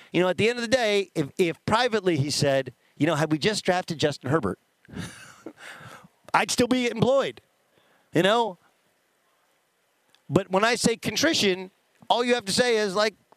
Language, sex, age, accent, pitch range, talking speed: English, male, 50-69, American, 155-220 Hz, 175 wpm